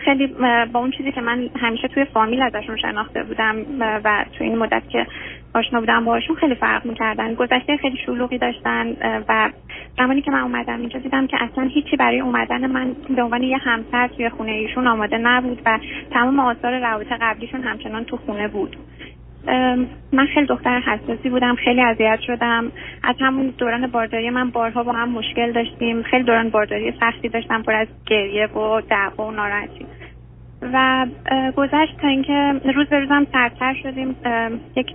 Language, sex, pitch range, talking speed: Persian, female, 230-265 Hz, 170 wpm